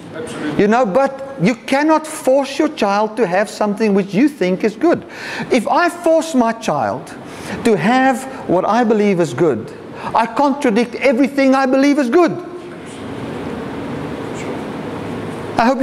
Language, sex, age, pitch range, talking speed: English, male, 50-69, 155-235 Hz, 140 wpm